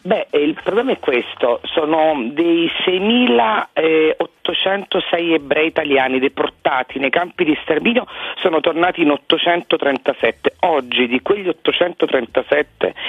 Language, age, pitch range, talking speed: Italian, 40-59, 140-230 Hz, 105 wpm